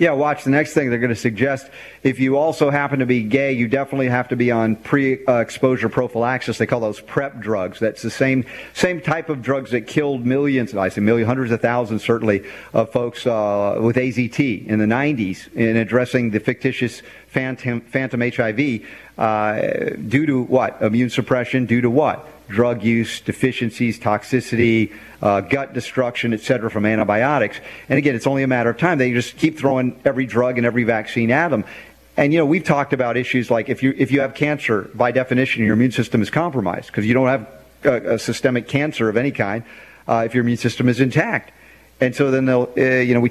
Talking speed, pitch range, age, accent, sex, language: 200 wpm, 115-140 Hz, 50-69, American, male, English